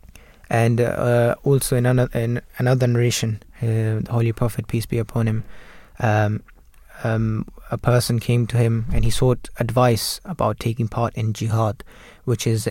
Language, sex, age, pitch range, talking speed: English, male, 20-39, 110-125 Hz, 160 wpm